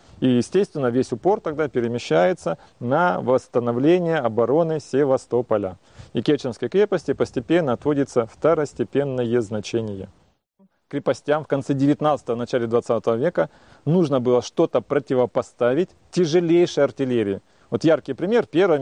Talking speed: 110 wpm